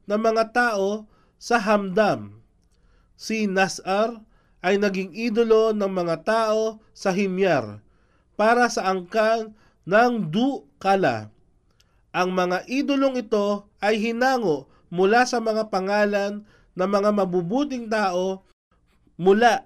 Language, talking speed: Filipino, 110 wpm